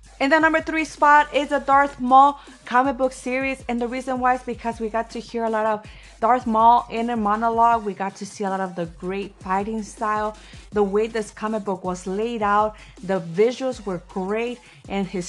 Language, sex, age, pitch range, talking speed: English, female, 30-49, 205-255 Hz, 215 wpm